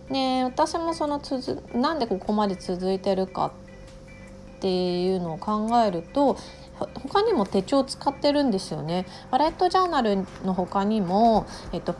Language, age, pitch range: Japanese, 30-49, 180-270 Hz